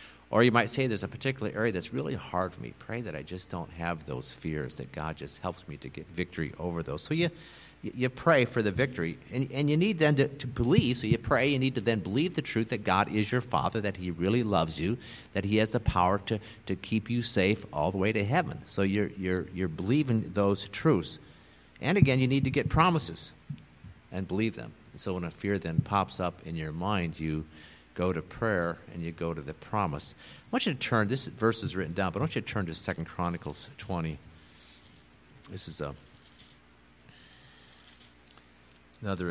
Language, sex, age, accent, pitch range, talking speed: English, male, 50-69, American, 75-115 Hz, 215 wpm